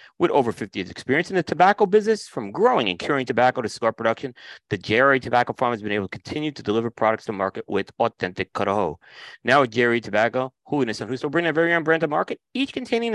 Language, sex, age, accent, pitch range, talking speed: English, male, 40-59, American, 110-150 Hz, 235 wpm